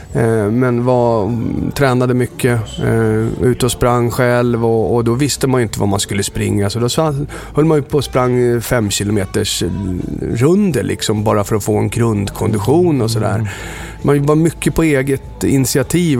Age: 30-49